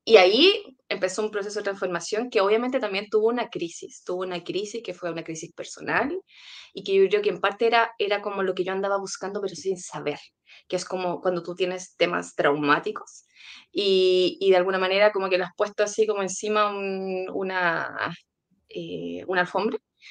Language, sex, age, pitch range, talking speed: English, female, 20-39, 180-245 Hz, 195 wpm